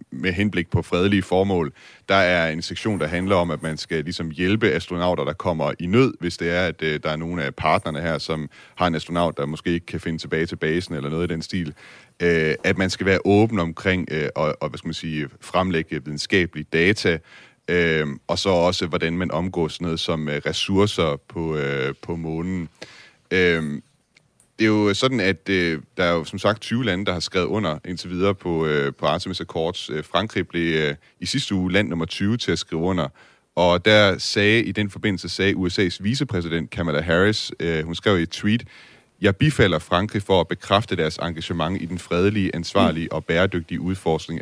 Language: Danish